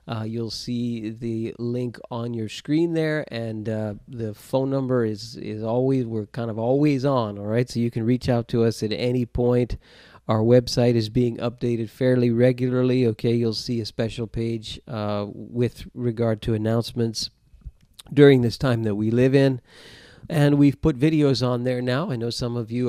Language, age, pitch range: English, 40-59, 115-130 Hz